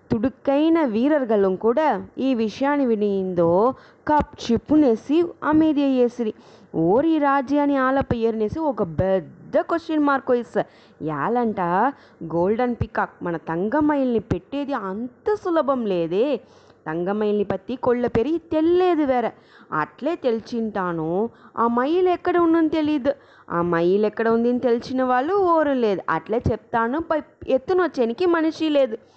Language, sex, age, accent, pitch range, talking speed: English, female, 20-39, Indian, 210-295 Hz, 90 wpm